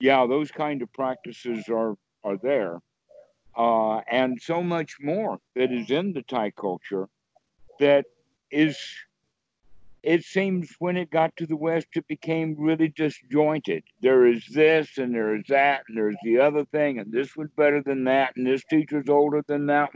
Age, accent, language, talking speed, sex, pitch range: 60-79, American, English, 170 wpm, male, 120-155 Hz